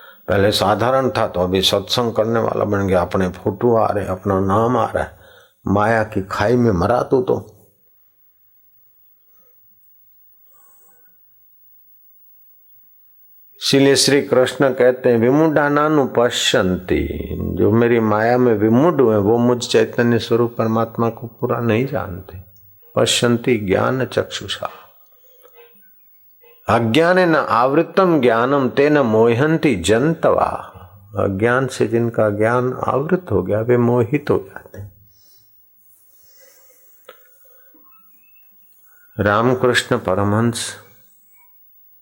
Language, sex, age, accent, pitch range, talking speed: Hindi, male, 50-69, native, 100-140 Hz, 100 wpm